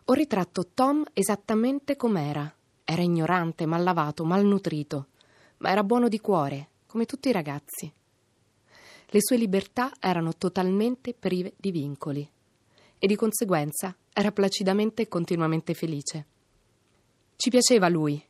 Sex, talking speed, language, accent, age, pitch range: female, 130 wpm, Italian, native, 30-49, 155-210 Hz